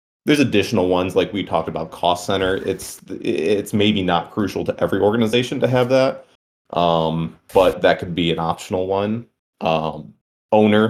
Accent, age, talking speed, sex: American, 30-49, 165 wpm, male